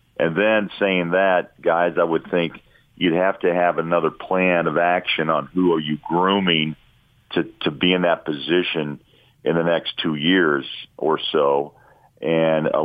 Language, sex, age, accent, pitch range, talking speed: English, male, 50-69, American, 80-90 Hz, 170 wpm